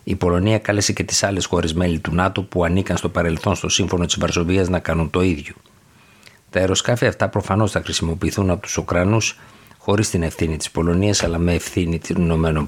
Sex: male